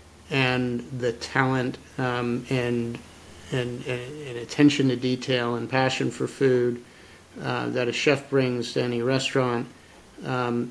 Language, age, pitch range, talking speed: English, 50-69, 120-135 Hz, 130 wpm